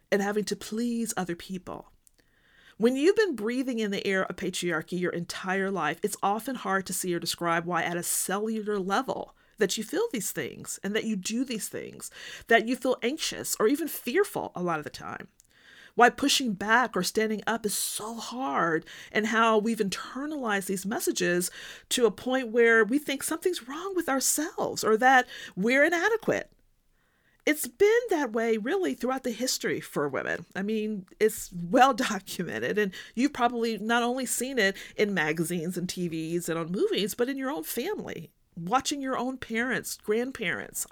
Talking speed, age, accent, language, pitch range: 175 wpm, 40-59, American, English, 185-255 Hz